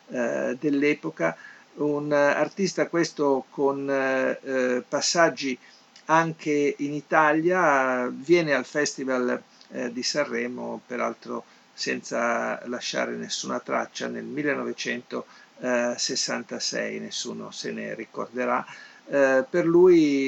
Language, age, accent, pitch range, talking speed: Italian, 50-69, native, 130-155 Hz, 90 wpm